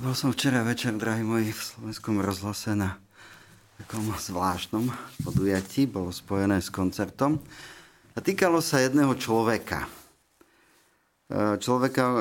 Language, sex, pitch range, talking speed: Slovak, male, 100-120 Hz, 115 wpm